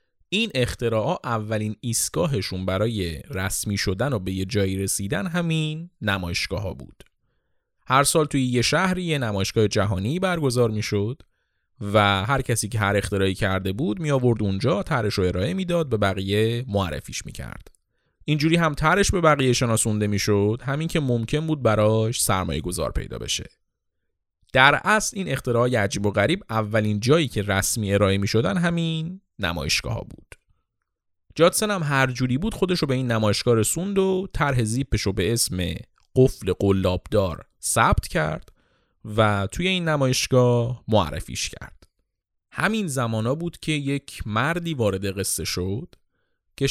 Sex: male